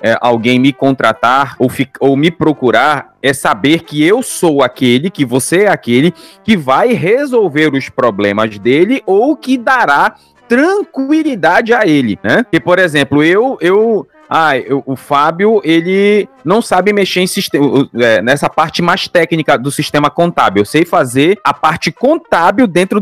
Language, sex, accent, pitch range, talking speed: Portuguese, male, Brazilian, 145-210 Hz, 160 wpm